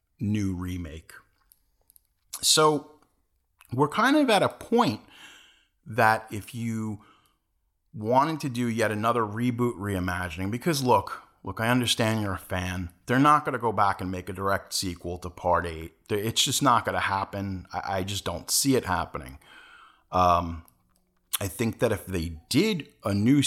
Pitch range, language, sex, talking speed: 90-135 Hz, English, male, 160 wpm